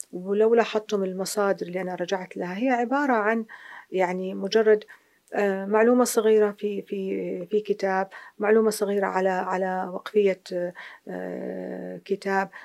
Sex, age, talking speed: female, 40-59, 115 wpm